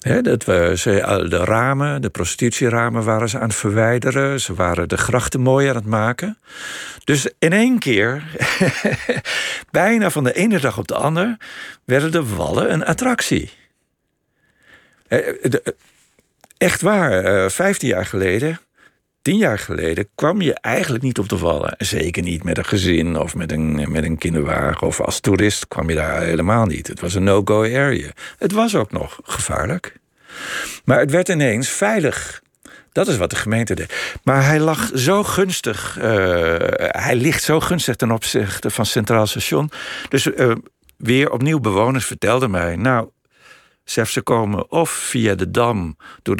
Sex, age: male, 50-69